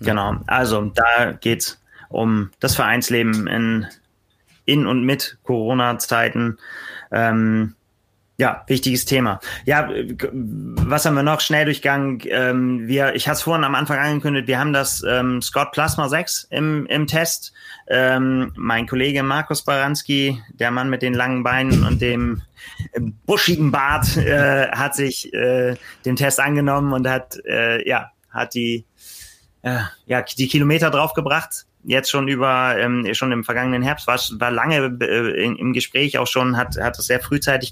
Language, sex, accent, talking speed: German, male, German, 150 wpm